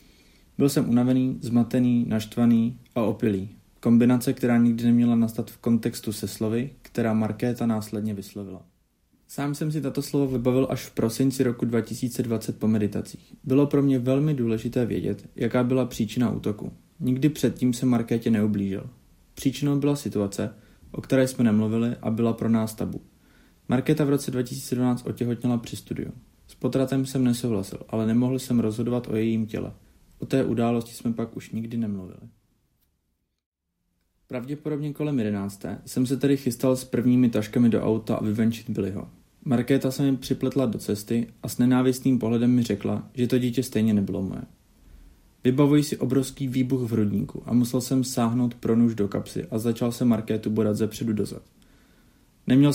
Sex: male